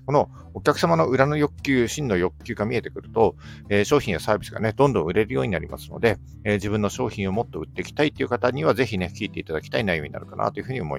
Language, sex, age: Japanese, male, 50-69